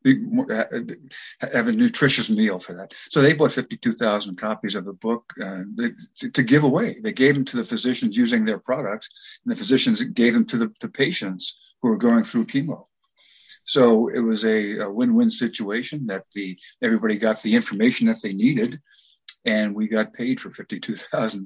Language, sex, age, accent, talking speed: English, male, 50-69, American, 180 wpm